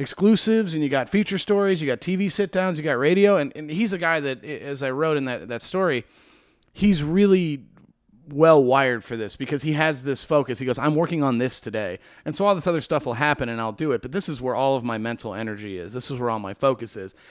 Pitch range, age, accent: 125-155 Hz, 30-49, American